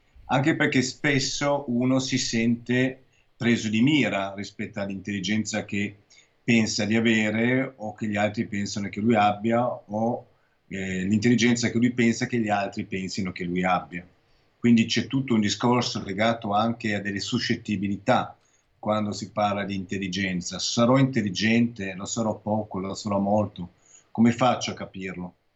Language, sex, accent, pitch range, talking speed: Italian, male, native, 100-120 Hz, 150 wpm